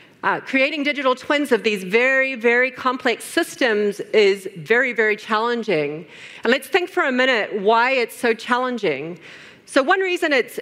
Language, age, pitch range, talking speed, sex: English, 40-59, 210-265 Hz, 160 wpm, female